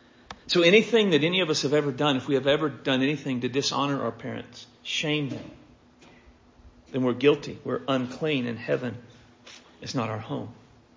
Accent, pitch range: American, 125-155 Hz